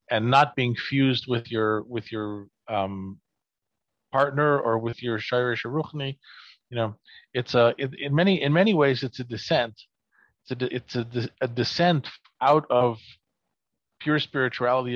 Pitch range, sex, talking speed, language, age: 115-140 Hz, male, 140 wpm, English, 40-59